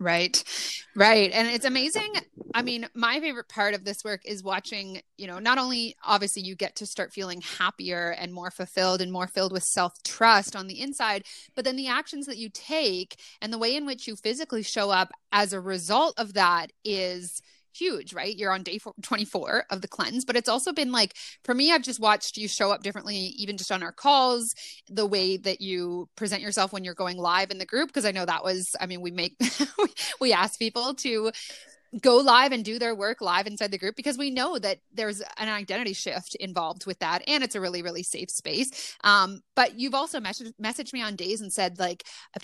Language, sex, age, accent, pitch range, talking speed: English, female, 20-39, American, 190-255 Hz, 220 wpm